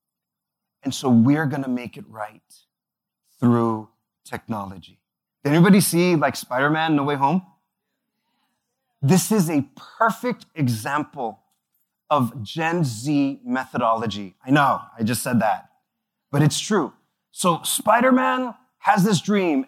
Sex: male